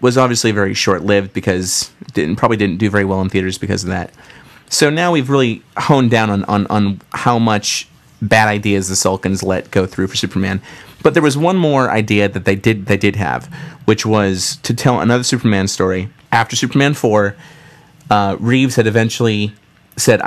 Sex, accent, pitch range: male, American, 100-125 Hz